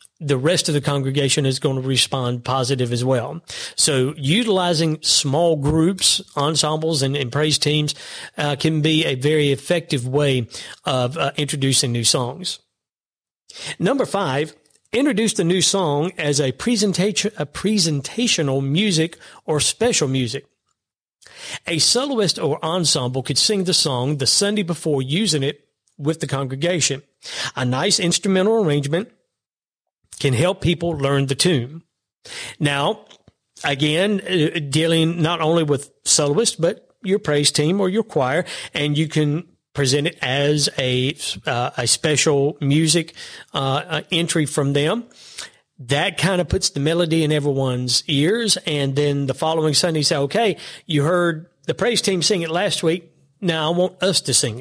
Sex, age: male, 40-59